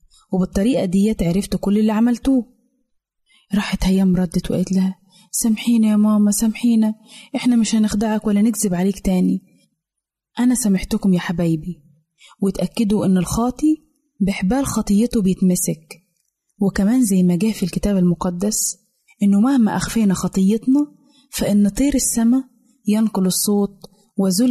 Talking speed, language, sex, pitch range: 120 wpm, Arabic, female, 185-230 Hz